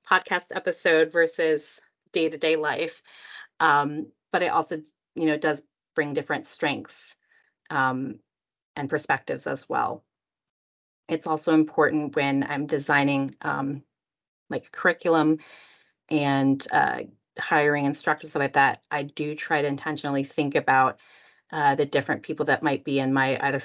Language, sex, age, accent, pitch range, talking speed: English, female, 30-49, American, 140-160 Hz, 130 wpm